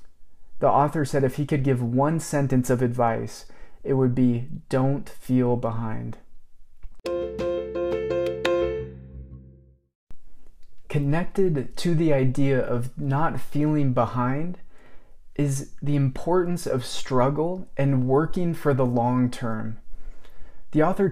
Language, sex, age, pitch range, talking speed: English, male, 30-49, 120-150 Hz, 110 wpm